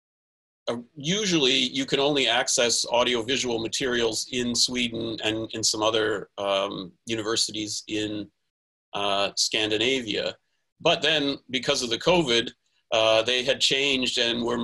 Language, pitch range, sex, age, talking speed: English, 110-130 Hz, male, 40-59, 125 wpm